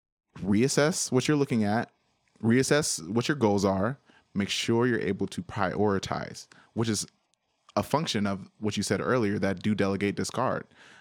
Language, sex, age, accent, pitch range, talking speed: English, male, 20-39, American, 95-110 Hz, 160 wpm